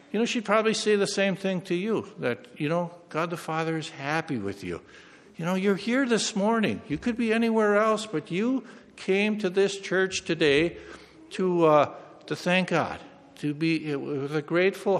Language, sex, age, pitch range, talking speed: English, male, 60-79, 150-200 Hz, 190 wpm